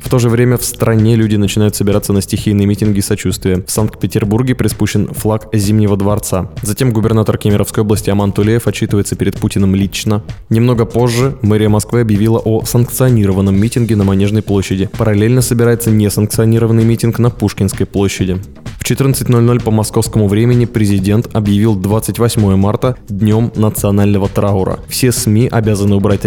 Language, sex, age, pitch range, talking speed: Russian, male, 20-39, 100-115 Hz, 145 wpm